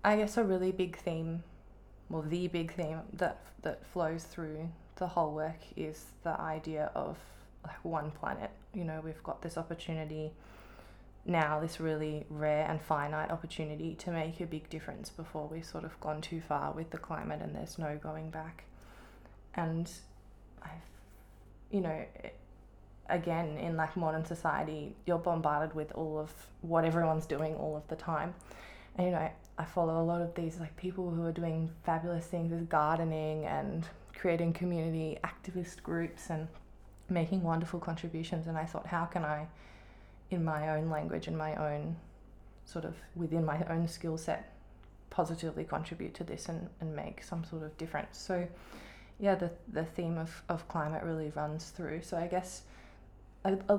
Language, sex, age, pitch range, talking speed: English, female, 20-39, 155-170 Hz, 170 wpm